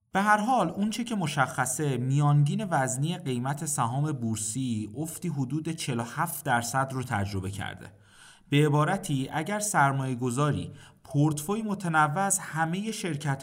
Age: 30-49